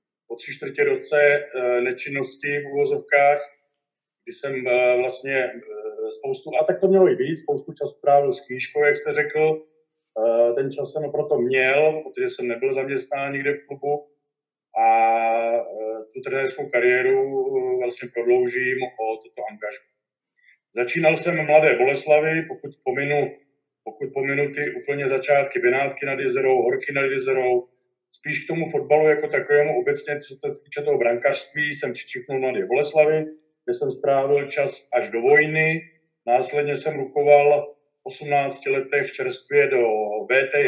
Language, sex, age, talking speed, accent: Czech, male, 40-59, 140 wpm, native